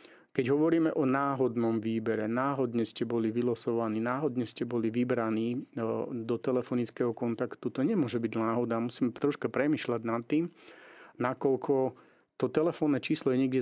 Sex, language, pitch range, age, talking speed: male, Slovak, 115-130 Hz, 30-49, 135 wpm